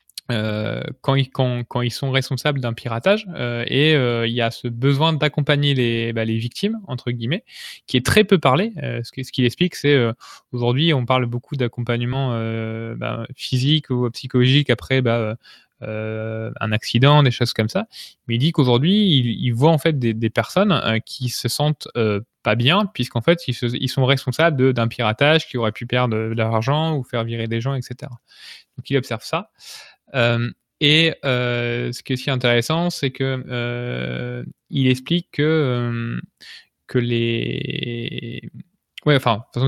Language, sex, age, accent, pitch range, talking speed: French, male, 20-39, French, 120-145 Hz, 175 wpm